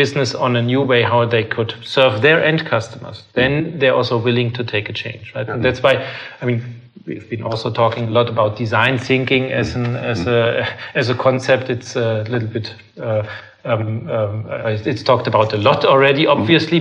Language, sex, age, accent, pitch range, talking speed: Danish, male, 40-59, German, 120-140 Hz, 200 wpm